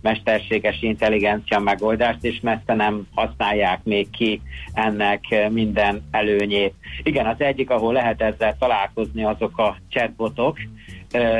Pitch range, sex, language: 105-115 Hz, male, Hungarian